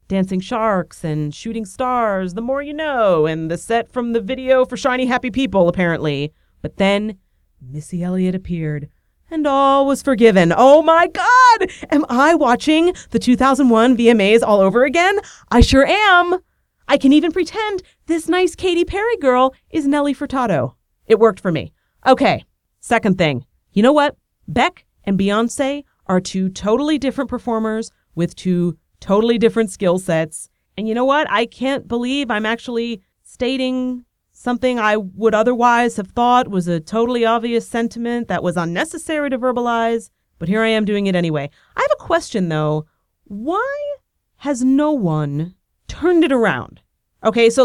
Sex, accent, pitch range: female, American, 185-275 Hz